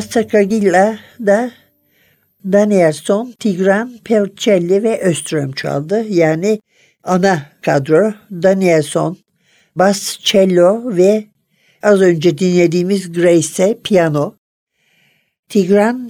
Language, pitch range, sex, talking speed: Turkish, 165-205 Hz, male, 80 wpm